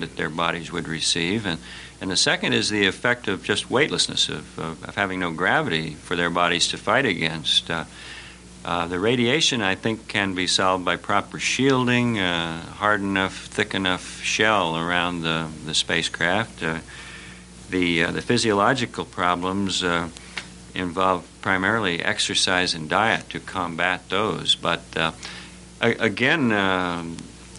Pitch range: 80-100 Hz